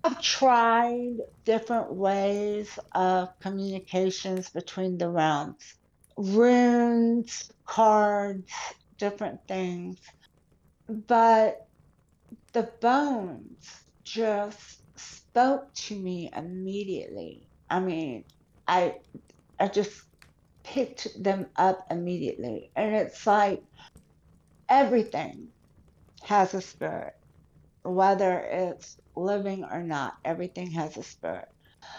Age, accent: 60-79, American